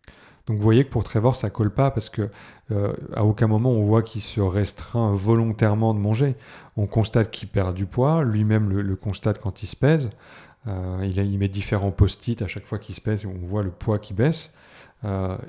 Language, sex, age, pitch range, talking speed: French, male, 30-49, 100-115 Hz, 220 wpm